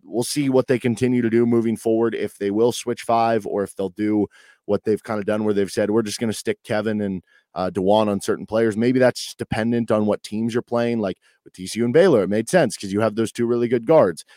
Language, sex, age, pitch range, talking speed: English, male, 20-39, 105-130 Hz, 265 wpm